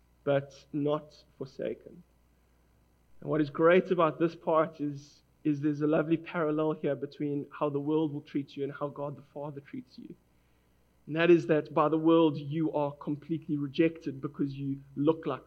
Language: English